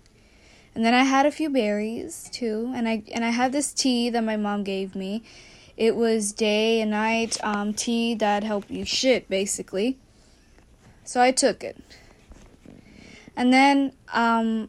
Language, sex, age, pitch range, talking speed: English, female, 10-29, 210-250 Hz, 160 wpm